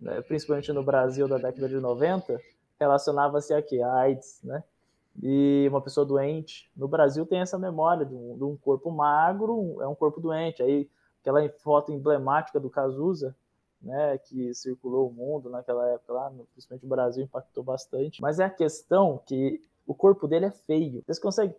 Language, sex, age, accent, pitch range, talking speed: Portuguese, male, 20-39, Brazilian, 145-190 Hz, 175 wpm